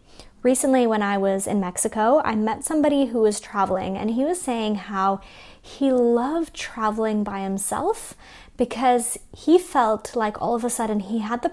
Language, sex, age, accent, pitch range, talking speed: English, female, 20-39, American, 210-275 Hz, 170 wpm